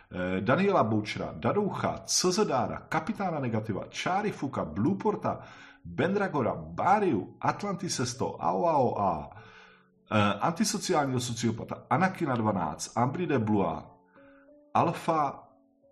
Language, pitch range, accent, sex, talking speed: Czech, 100-140 Hz, native, male, 70 wpm